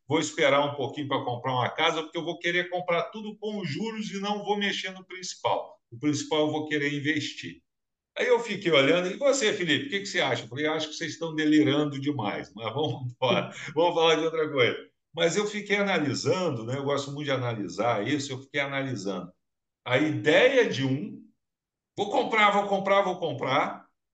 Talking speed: 195 wpm